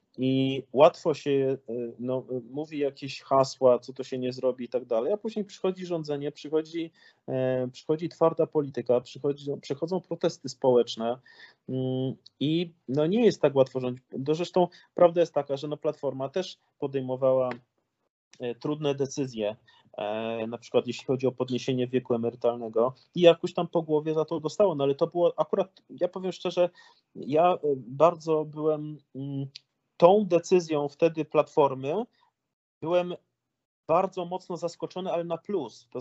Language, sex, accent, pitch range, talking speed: Polish, male, native, 130-170 Hz, 140 wpm